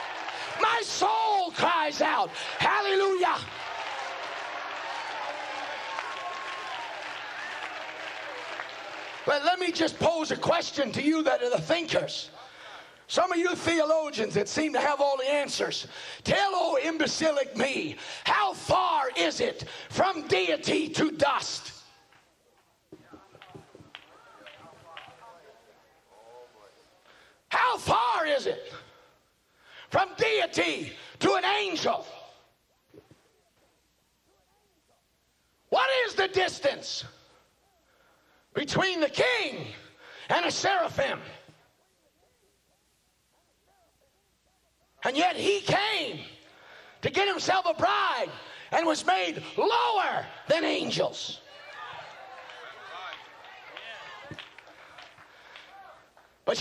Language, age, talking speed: English, 50-69, 80 wpm